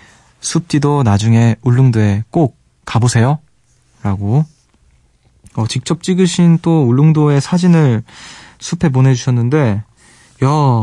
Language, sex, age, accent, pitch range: Korean, male, 20-39, native, 110-150 Hz